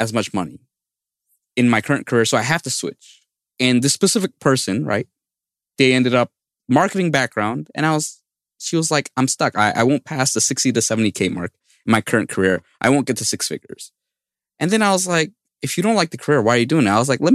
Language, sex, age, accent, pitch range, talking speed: English, male, 20-39, American, 115-155 Hz, 240 wpm